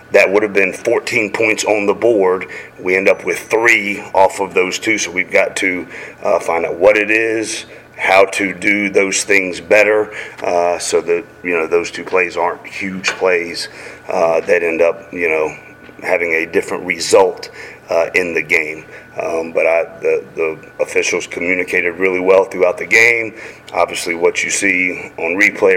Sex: male